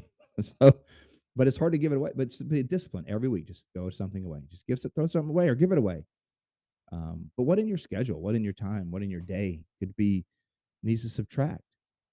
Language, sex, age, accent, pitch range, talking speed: English, male, 30-49, American, 95-135 Hz, 225 wpm